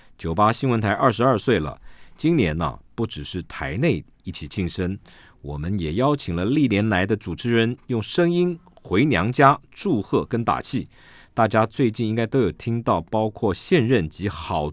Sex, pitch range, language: male, 85-120 Hz, Chinese